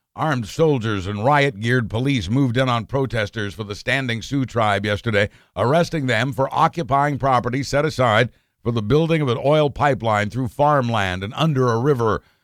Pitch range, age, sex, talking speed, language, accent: 110-140 Hz, 60-79, male, 170 wpm, English, American